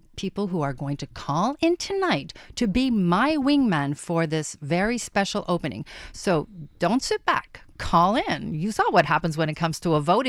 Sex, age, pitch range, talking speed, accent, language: female, 50-69, 170-255 Hz, 195 wpm, American, English